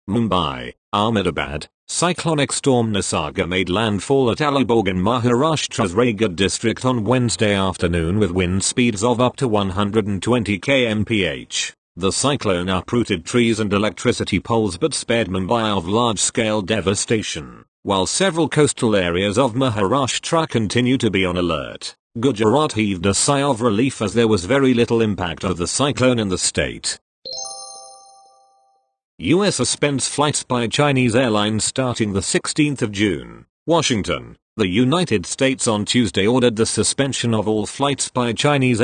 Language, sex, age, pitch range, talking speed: English, male, 40-59, 100-130 Hz, 140 wpm